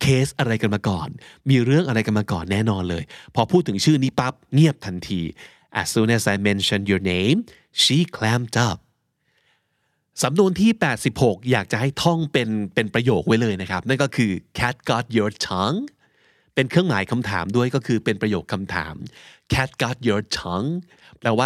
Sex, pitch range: male, 110-140 Hz